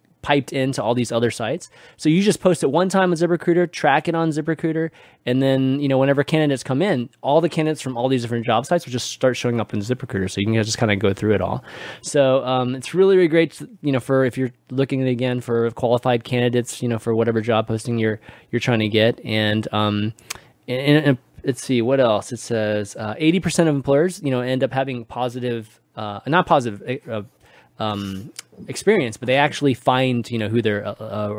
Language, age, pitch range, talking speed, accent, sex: English, 20-39, 115-150 Hz, 230 wpm, American, male